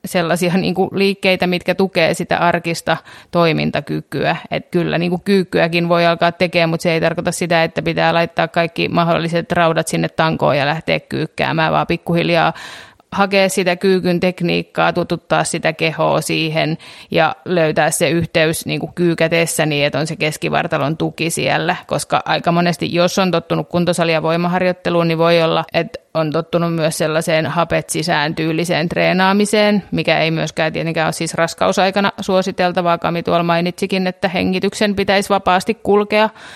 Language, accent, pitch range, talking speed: Finnish, native, 165-180 Hz, 150 wpm